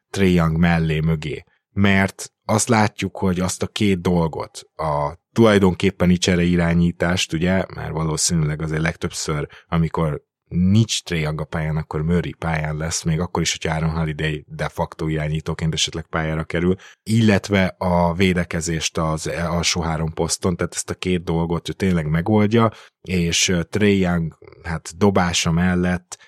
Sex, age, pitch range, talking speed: male, 20-39, 80-95 Hz, 140 wpm